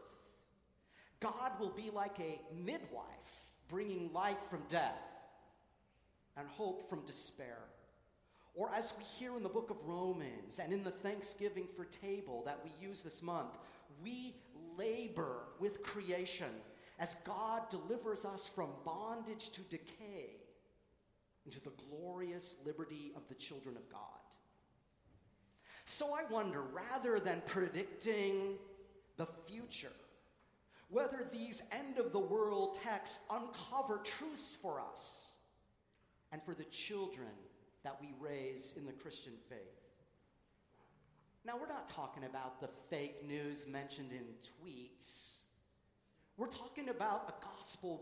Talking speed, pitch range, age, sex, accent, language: 120 wpm, 160-230 Hz, 40-59, male, American, English